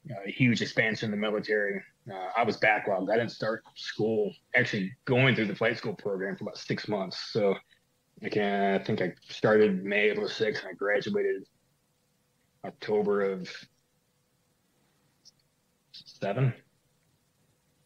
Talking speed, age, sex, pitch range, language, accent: 140 wpm, 30-49, male, 105-165 Hz, English, American